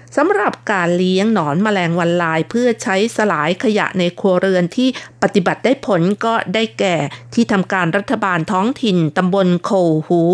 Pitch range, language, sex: 180-225 Hz, Thai, female